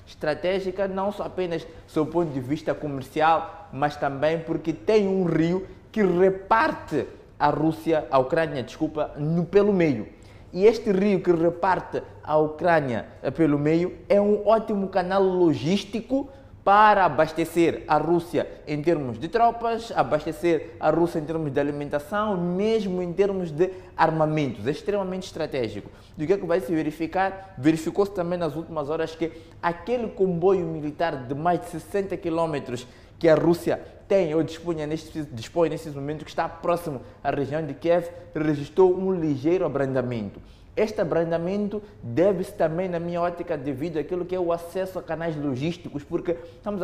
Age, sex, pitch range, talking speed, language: 20-39, male, 155-190 Hz, 160 wpm, Portuguese